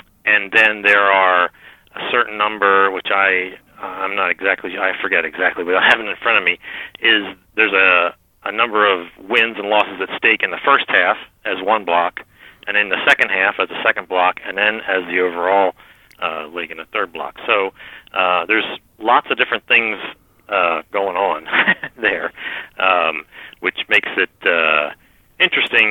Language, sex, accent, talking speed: English, male, American, 180 wpm